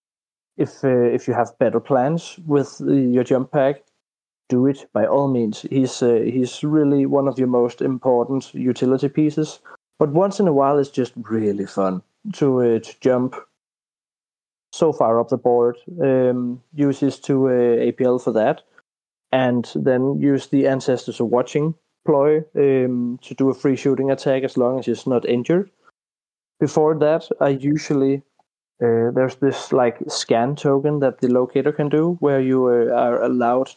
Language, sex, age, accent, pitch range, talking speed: English, male, 30-49, Danish, 125-140 Hz, 170 wpm